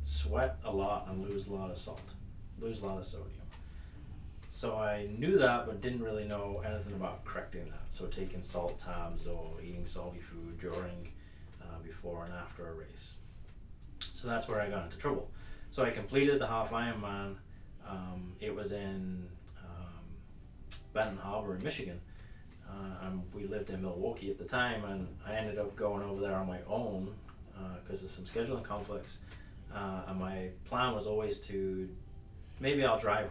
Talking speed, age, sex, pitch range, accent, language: 175 wpm, 30-49, male, 90-110 Hz, American, English